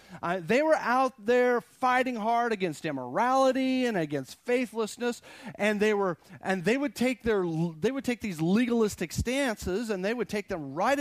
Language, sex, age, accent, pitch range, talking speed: English, male, 40-59, American, 150-225 Hz, 175 wpm